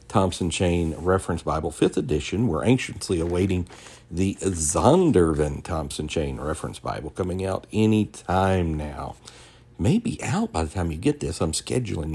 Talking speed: 150 wpm